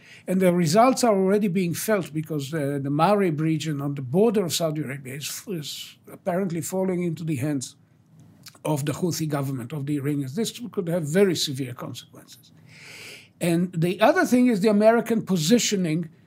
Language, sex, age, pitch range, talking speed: English, male, 60-79, 145-200 Hz, 175 wpm